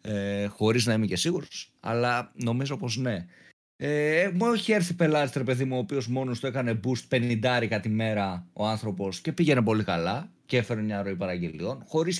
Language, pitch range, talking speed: Greek, 110-180 Hz, 190 wpm